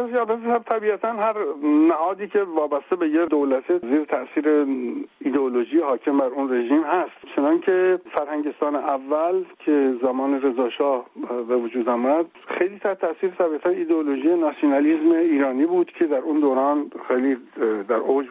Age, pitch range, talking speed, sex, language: 60-79, 140-230 Hz, 140 wpm, male, Persian